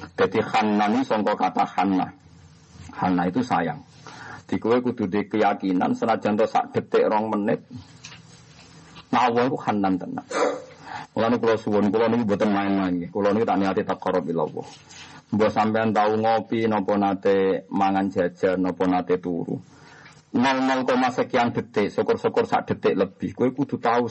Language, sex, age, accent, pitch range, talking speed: Indonesian, male, 50-69, native, 105-145 Hz, 145 wpm